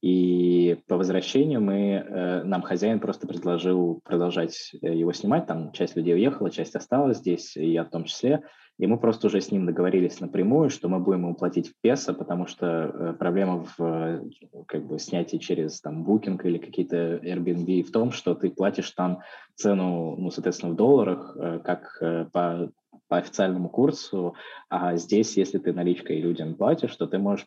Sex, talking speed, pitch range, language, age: male, 165 wpm, 85-90 Hz, Russian, 20-39